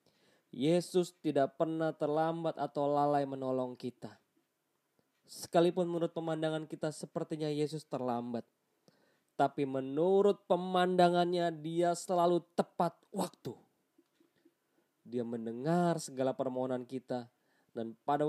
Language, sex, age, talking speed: Indonesian, male, 20-39, 95 wpm